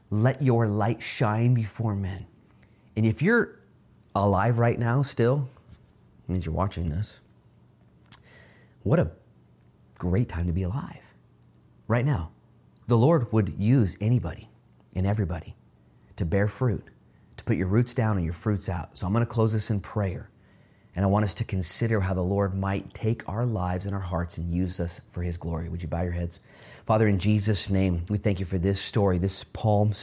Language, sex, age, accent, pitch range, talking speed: English, male, 30-49, American, 95-120 Hz, 180 wpm